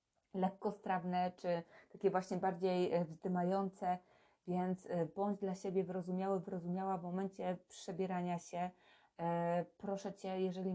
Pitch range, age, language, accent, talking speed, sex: 175-195 Hz, 20-39, Polish, native, 105 wpm, female